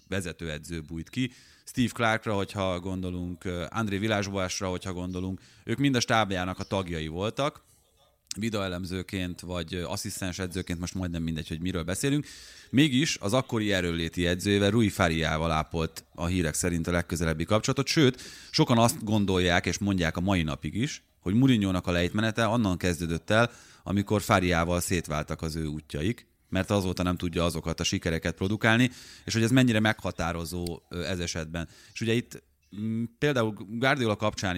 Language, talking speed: Hungarian, 155 wpm